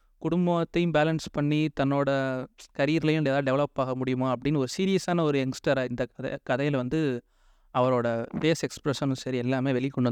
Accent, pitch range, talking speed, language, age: native, 130-160 Hz, 140 wpm, Tamil, 30-49